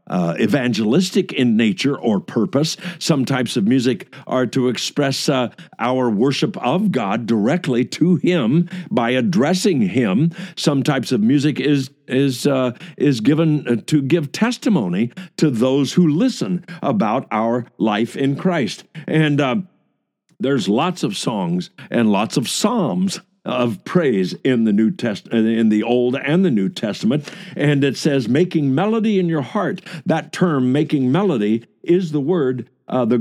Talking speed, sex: 155 wpm, male